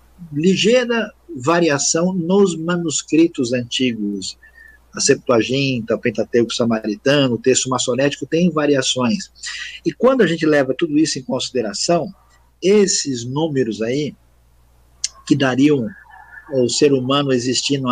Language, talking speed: Portuguese, 115 wpm